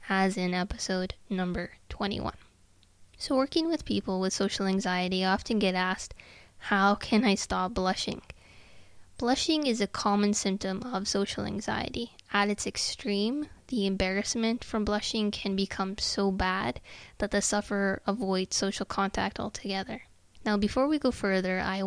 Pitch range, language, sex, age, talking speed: 195-220 Hz, English, female, 20-39, 145 wpm